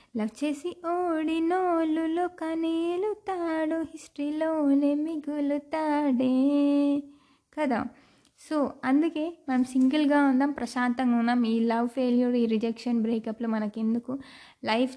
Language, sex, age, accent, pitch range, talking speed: Telugu, female, 20-39, native, 240-285 Hz, 90 wpm